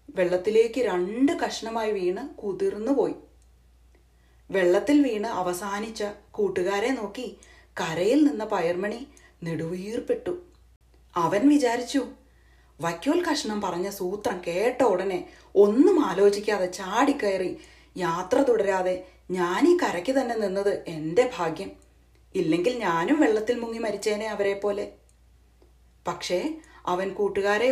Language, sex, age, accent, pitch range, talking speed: Malayalam, female, 30-49, native, 180-265 Hz, 95 wpm